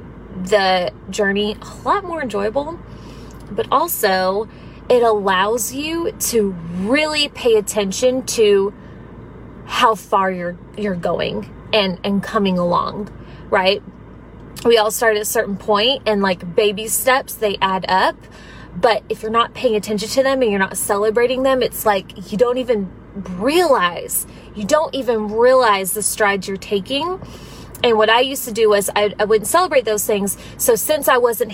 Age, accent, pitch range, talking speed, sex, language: 20-39, American, 205-265 Hz, 160 wpm, female, English